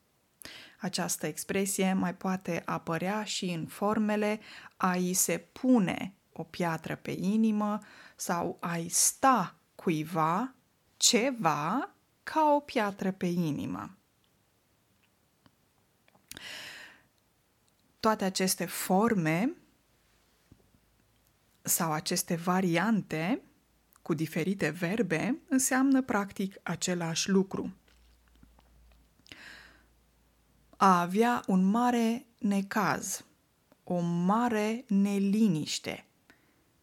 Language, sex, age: Romanian, female, 20-39